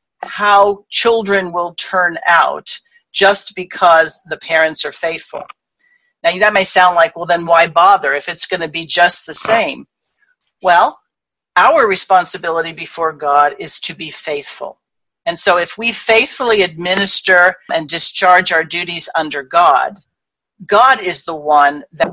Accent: American